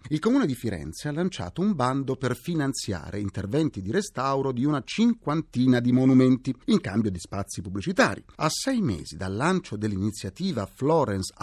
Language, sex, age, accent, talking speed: Italian, male, 40-59, native, 160 wpm